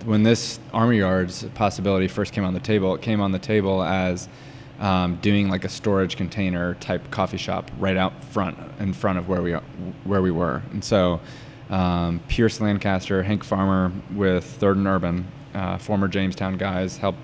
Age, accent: 20-39, American